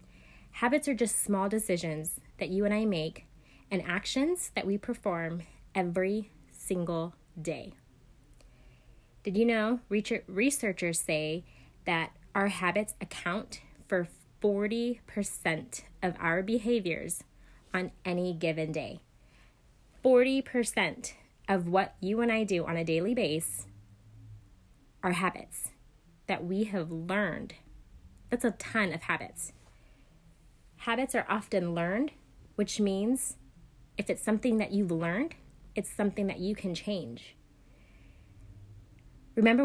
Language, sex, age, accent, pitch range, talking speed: English, female, 20-39, American, 160-210 Hz, 120 wpm